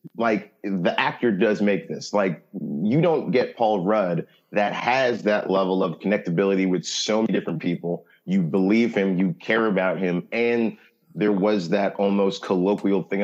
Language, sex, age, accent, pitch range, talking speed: English, male, 30-49, American, 95-115 Hz, 170 wpm